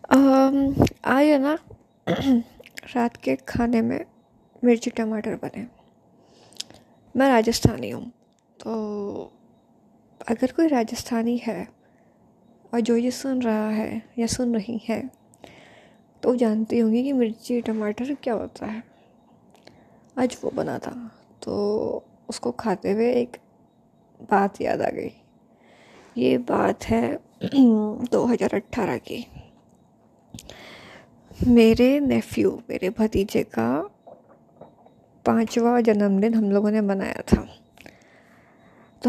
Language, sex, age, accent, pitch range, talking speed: Hindi, female, 20-39, native, 215-245 Hz, 105 wpm